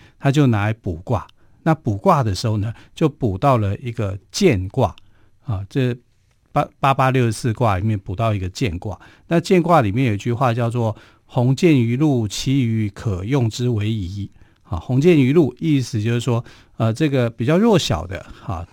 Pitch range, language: 105-130 Hz, Chinese